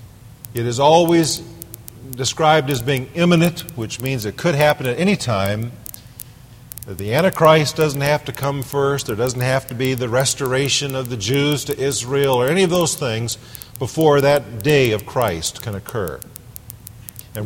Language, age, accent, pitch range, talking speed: English, 50-69, American, 115-150 Hz, 165 wpm